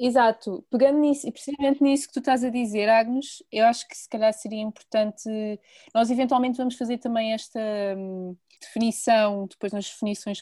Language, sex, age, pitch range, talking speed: Portuguese, female, 20-39, 205-245 Hz, 155 wpm